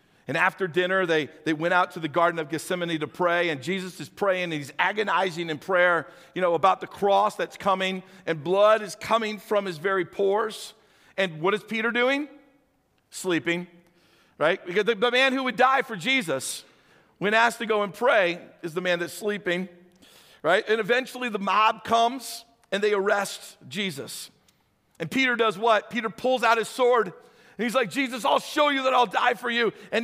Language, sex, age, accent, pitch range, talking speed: English, male, 50-69, American, 180-245 Hz, 195 wpm